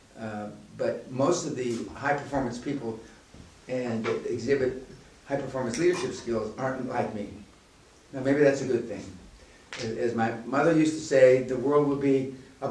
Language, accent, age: English, American, 50-69